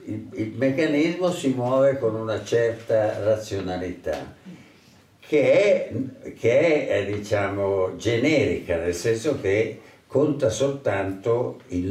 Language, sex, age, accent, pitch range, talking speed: Italian, male, 60-79, native, 100-135 Hz, 105 wpm